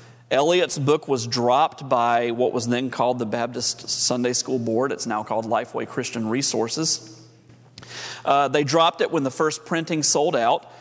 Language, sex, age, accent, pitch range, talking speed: English, male, 40-59, American, 120-155 Hz, 165 wpm